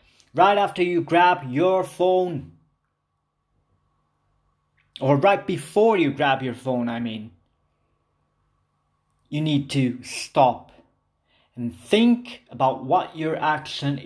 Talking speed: 105 wpm